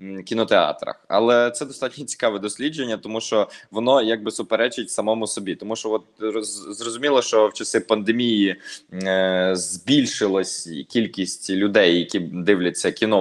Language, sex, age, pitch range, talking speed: Ukrainian, male, 20-39, 100-120 Hz, 125 wpm